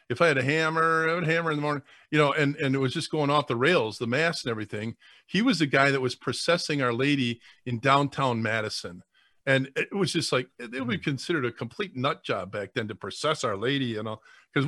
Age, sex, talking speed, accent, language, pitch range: 40-59, male, 250 wpm, American, English, 120-155 Hz